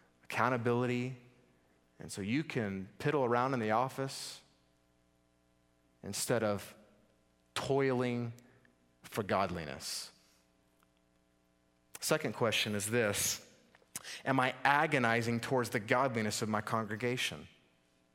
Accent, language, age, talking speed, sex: American, English, 30-49, 95 wpm, male